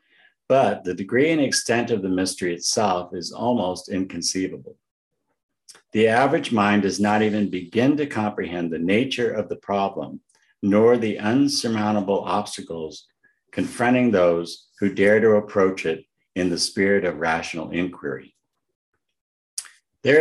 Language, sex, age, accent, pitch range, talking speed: English, male, 50-69, American, 90-110 Hz, 130 wpm